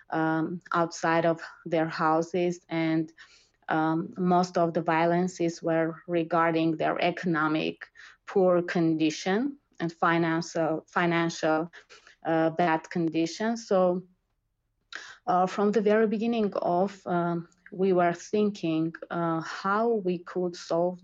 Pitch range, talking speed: 165-185 Hz, 110 wpm